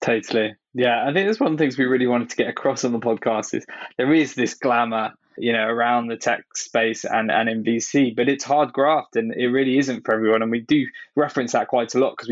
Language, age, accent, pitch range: English, 20-39, British, 125-145 Hz